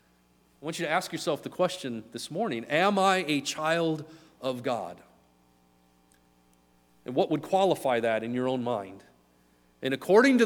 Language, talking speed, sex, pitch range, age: English, 160 wpm, male, 115-195 Hz, 40-59